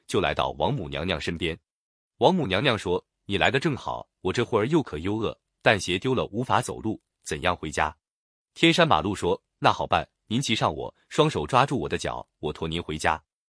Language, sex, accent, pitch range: Chinese, male, native, 85-130 Hz